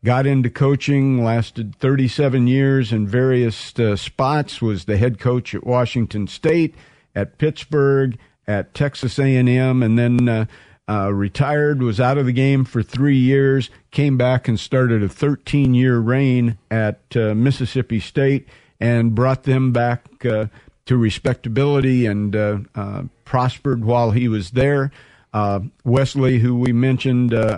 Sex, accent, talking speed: male, American, 145 wpm